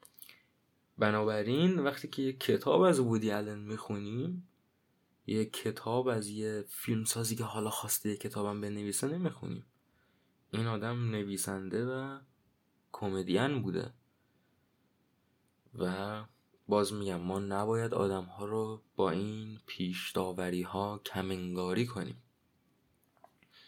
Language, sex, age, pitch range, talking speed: Persian, male, 20-39, 95-110 Hz, 105 wpm